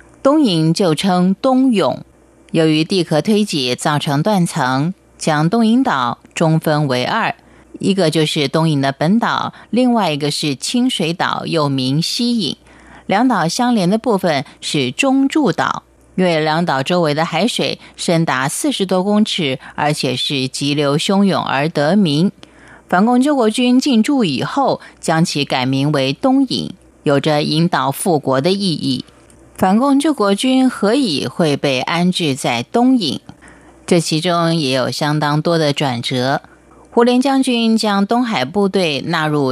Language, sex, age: Chinese, female, 30-49